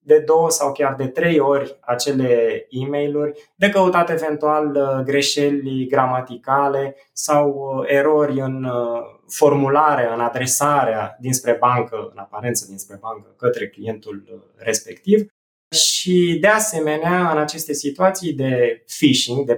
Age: 20-39